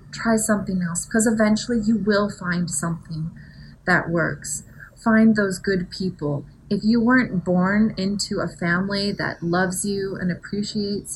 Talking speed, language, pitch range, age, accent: 145 wpm, English, 175-215 Hz, 30-49, American